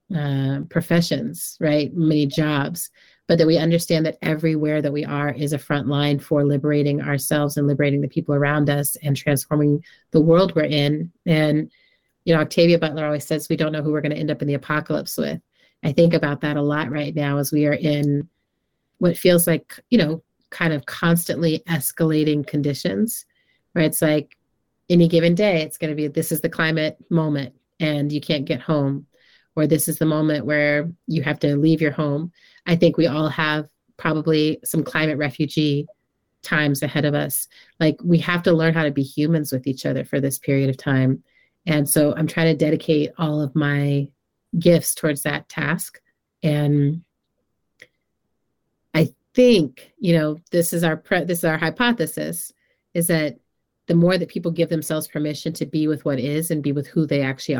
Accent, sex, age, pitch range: American, female, 30-49, 145-165 Hz